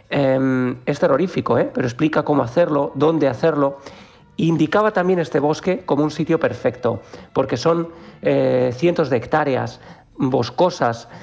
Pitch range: 135-165 Hz